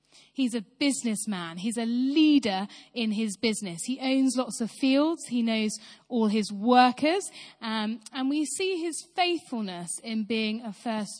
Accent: British